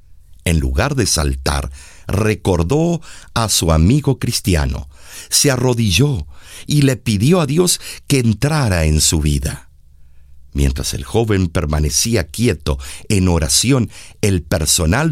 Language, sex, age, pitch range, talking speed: Spanish, male, 60-79, 75-125 Hz, 120 wpm